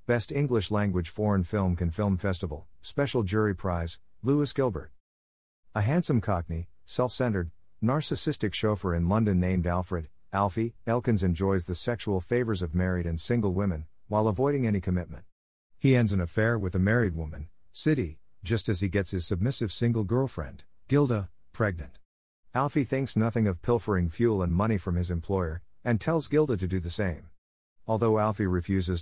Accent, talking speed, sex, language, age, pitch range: American, 160 wpm, male, English, 50-69, 90-115 Hz